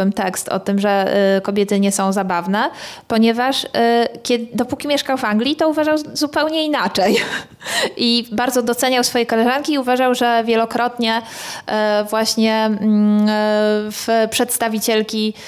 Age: 20-39